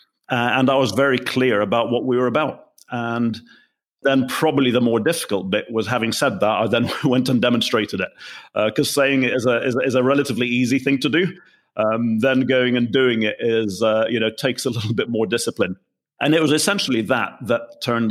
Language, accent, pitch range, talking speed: English, British, 105-125 Hz, 215 wpm